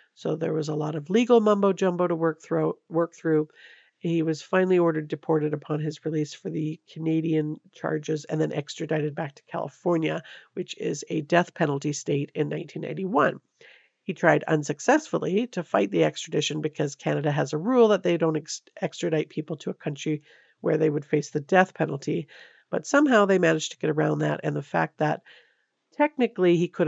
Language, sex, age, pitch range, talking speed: English, female, 50-69, 155-180 Hz, 185 wpm